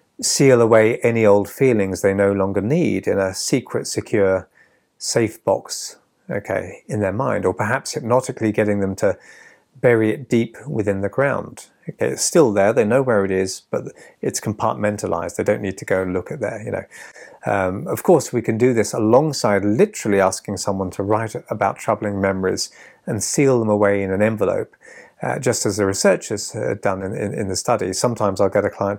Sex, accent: male, British